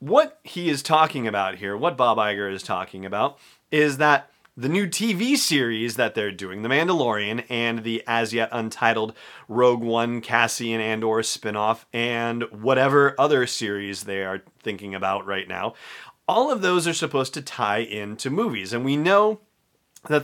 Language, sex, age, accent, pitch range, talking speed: English, male, 30-49, American, 110-145 Hz, 165 wpm